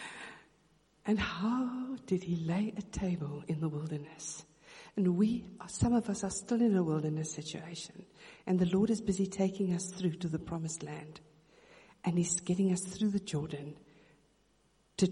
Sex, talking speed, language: female, 165 wpm, English